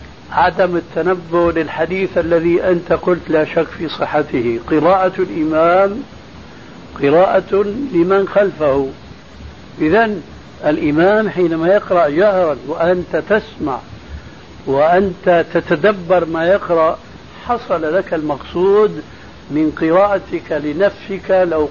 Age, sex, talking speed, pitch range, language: 60-79, male, 90 wpm, 150-190 Hz, Arabic